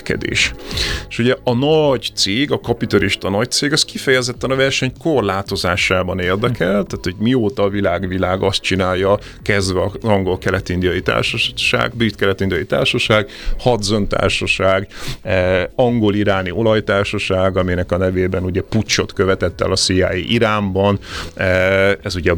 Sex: male